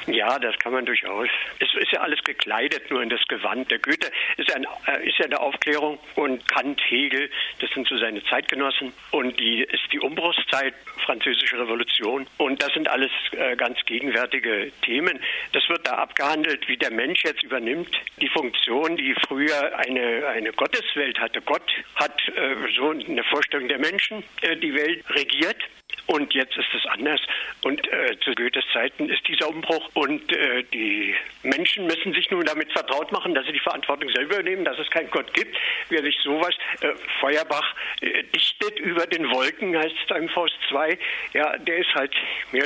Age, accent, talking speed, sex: 60-79, German, 175 wpm, male